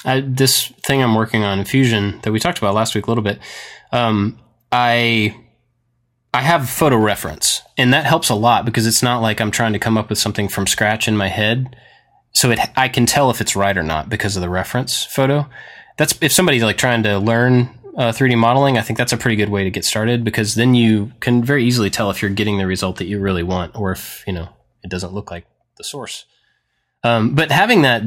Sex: male